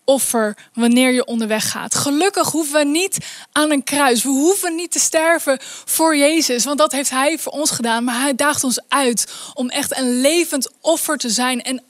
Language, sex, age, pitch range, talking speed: Dutch, female, 10-29, 250-315 Hz, 195 wpm